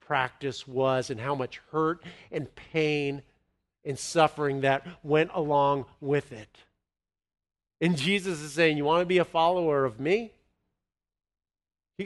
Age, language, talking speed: 50-69, English, 140 wpm